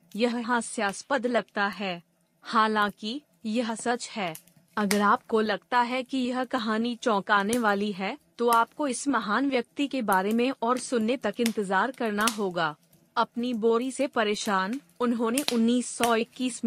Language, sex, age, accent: Hindi, female, 30-49, native